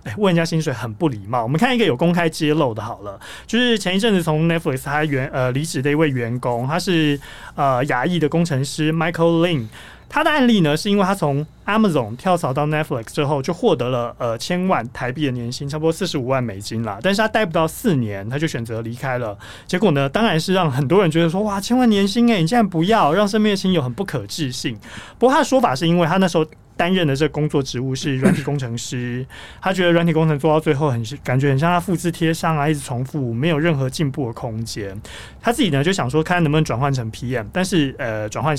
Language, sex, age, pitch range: Chinese, male, 30-49, 125-170 Hz